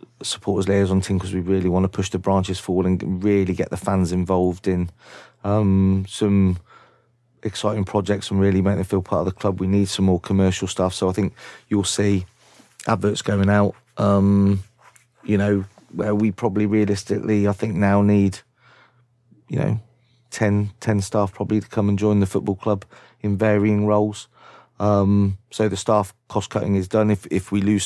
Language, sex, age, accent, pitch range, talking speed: English, male, 30-49, British, 100-110 Hz, 185 wpm